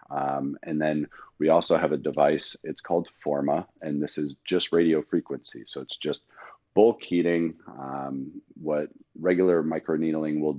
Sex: male